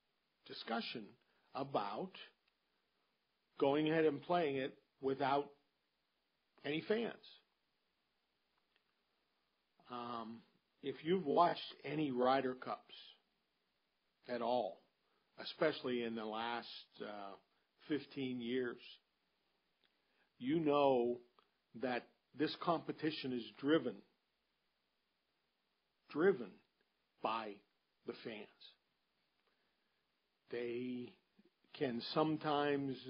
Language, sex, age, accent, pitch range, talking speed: English, male, 50-69, American, 120-140 Hz, 75 wpm